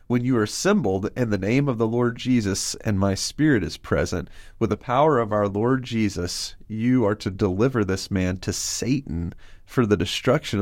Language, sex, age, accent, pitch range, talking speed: English, male, 30-49, American, 95-115 Hz, 190 wpm